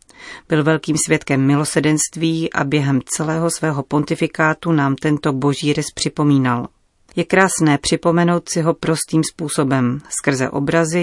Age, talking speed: 30-49, 125 wpm